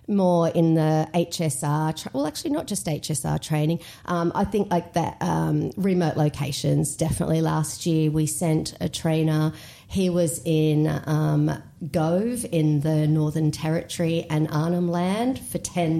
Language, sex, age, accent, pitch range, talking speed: English, female, 40-59, Australian, 155-175 Hz, 145 wpm